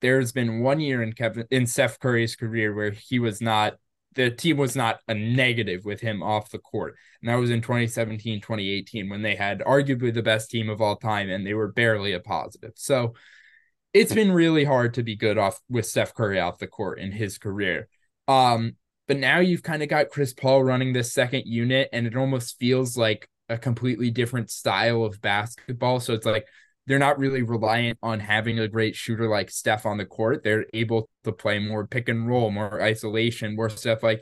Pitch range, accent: 110-130 Hz, American